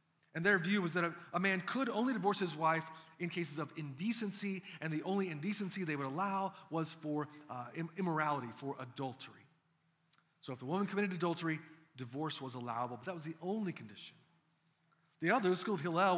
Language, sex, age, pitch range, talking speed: English, male, 30-49, 150-195 Hz, 185 wpm